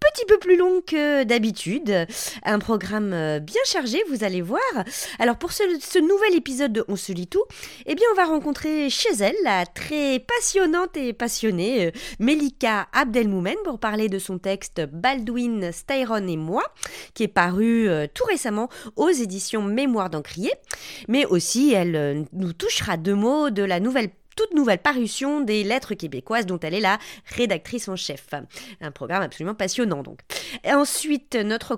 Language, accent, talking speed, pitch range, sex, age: French, French, 165 wpm, 185-275 Hz, female, 30-49